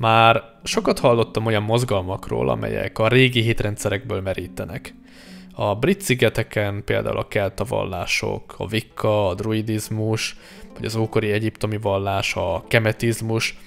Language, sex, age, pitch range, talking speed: Hungarian, male, 10-29, 105-125 Hz, 120 wpm